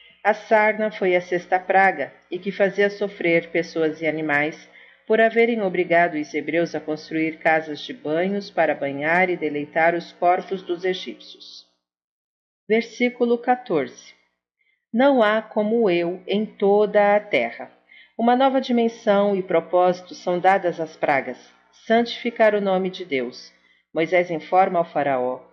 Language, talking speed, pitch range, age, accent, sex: Portuguese, 140 wpm, 155-205 Hz, 40-59, Brazilian, female